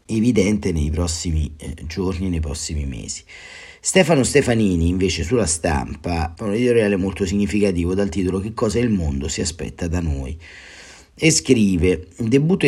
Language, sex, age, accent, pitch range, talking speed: Italian, male, 30-49, native, 80-95 Hz, 145 wpm